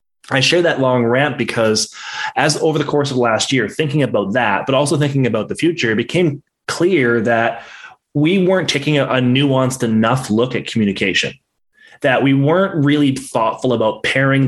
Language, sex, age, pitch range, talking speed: English, male, 20-39, 115-145 Hz, 175 wpm